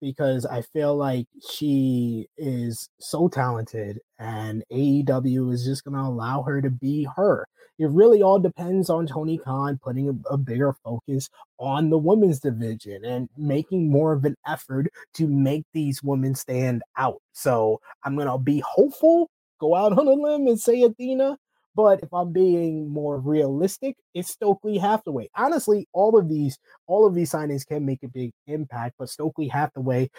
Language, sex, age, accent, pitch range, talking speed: English, male, 20-39, American, 130-165 Hz, 165 wpm